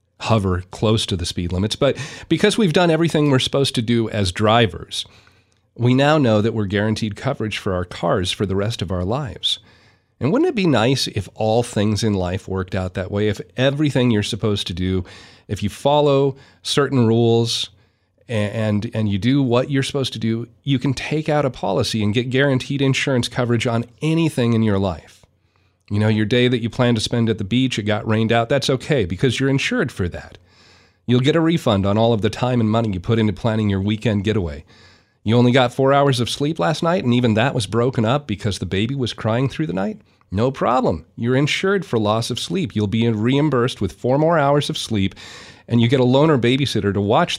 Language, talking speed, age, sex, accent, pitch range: English, 220 wpm, 40-59, male, American, 105-135 Hz